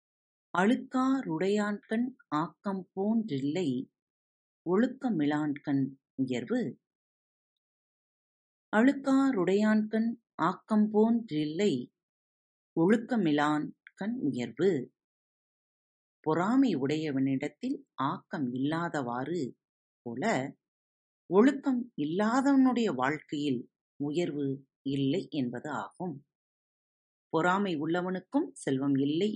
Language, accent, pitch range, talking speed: Tamil, native, 140-225 Hz, 55 wpm